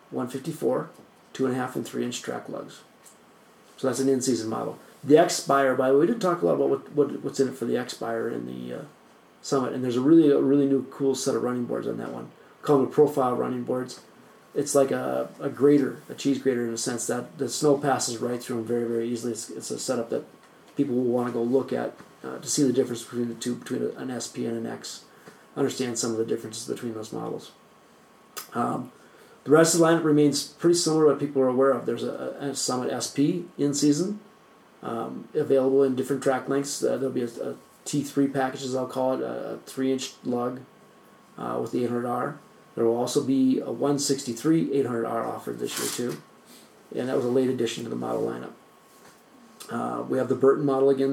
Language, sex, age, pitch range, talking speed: English, male, 30-49, 120-140 Hz, 215 wpm